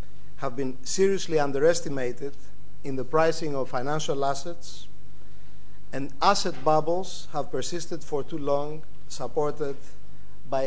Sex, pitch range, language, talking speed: male, 130-160 Hz, English, 110 wpm